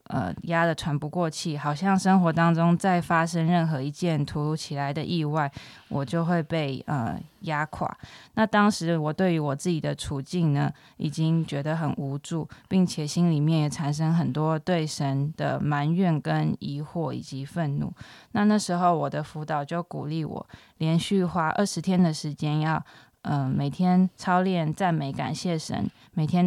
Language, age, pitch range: Chinese, 20-39, 150-180 Hz